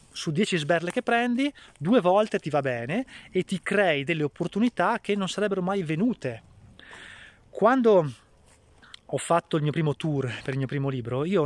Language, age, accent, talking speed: Italian, 20-39, native, 175 wpm